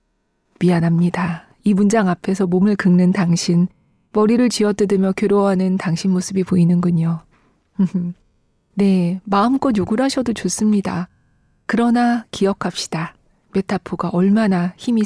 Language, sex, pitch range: Korean, female, 180-240 Hz